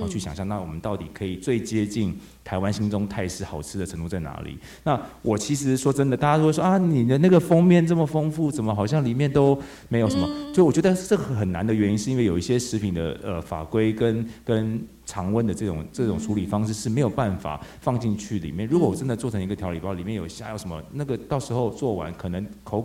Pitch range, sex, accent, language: 95-125 Hz, male, native, Chinese